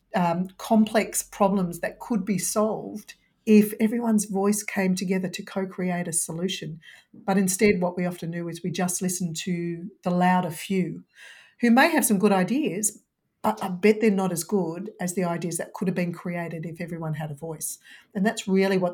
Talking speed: 190 wpm